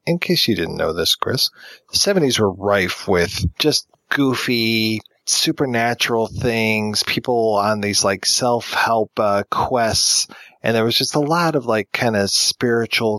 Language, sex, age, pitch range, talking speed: English, male, 30-49, 95-115 Hz, 155 wpm